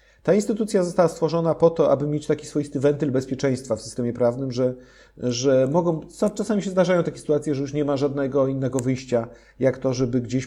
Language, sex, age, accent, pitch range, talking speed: Polish, male, 40-59, native, 125-155 Hz, 200 wpm